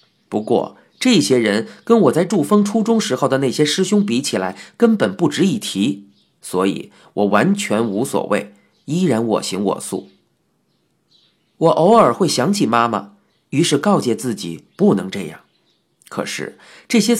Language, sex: Chinese, male